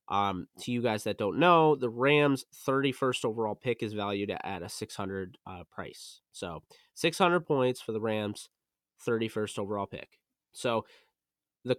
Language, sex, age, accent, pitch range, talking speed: English, male, 20-39, American, 110-130 Hz, 155 wpm